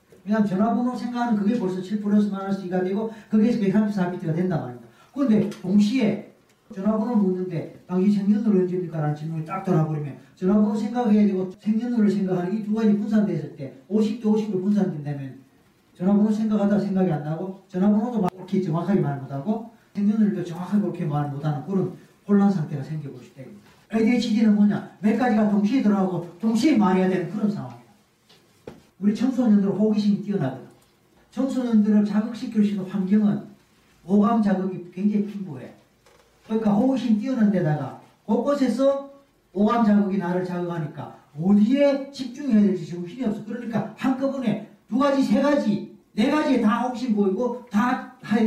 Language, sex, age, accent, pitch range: Korean, male, 40-59, native, 180-220 Hz